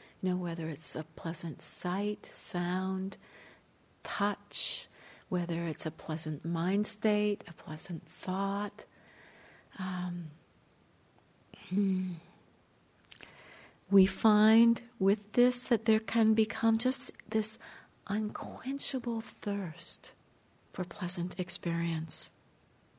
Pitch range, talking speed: 175-215 Hz, 90 wpm